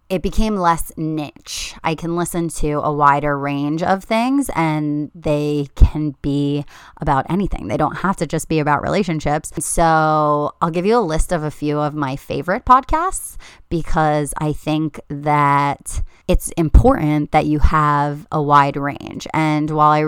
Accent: American